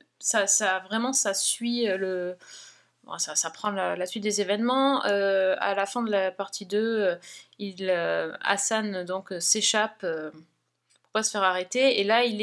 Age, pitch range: 20-39, 175-215 Hz